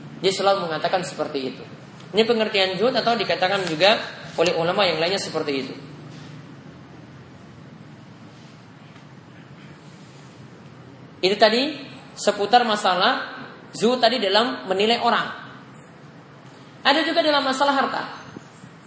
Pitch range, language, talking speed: 185-255 Hz, English, 100 wpm